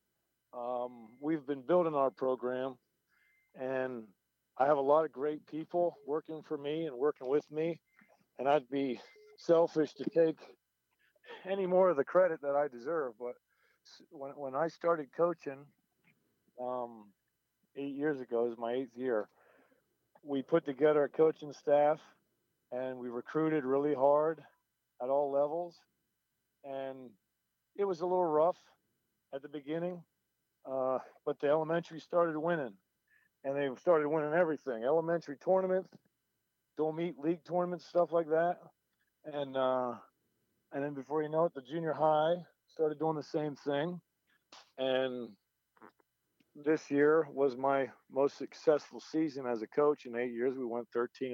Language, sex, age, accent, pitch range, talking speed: English, male, 50-69, American, 130-160 Hz, 145 wpm